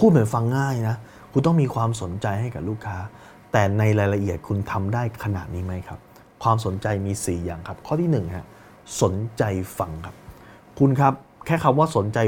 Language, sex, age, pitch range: Thai, male, 20-39, 100-130 Hz